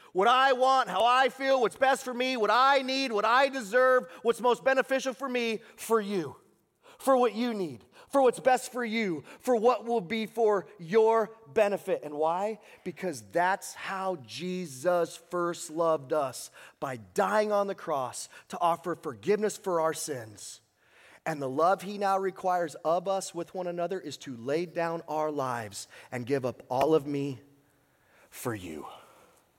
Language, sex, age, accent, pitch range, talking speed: English, male, 30-49, American, 140-220 Hz, 170 wpm